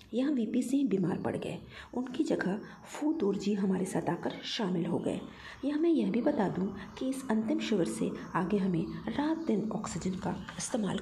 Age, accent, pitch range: 50-69, native, 200-265 Hz